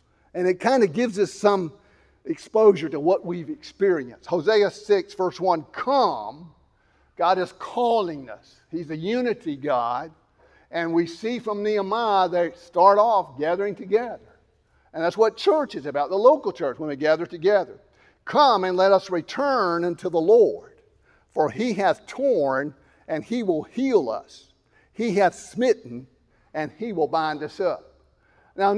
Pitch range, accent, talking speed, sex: 170-230 Hz, American, 155 wpm, male